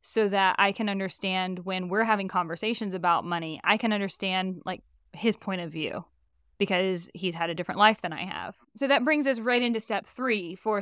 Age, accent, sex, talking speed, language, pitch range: 10-29, American, female, 205 wpm, English, 190-230 Hz